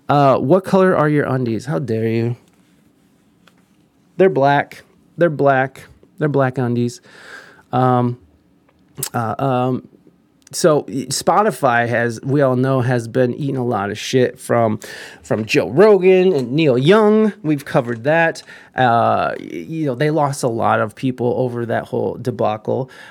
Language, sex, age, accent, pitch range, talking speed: English, male, 20-39, American, 125-165 Hz, 145 wpm